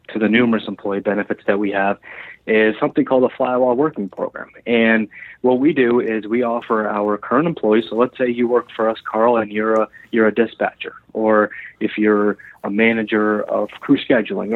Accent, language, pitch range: American, English, 105-120 Hz